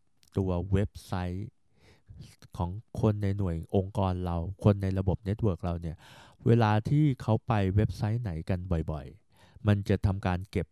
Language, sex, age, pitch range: Thai, male, 20-39, 95-115 Hz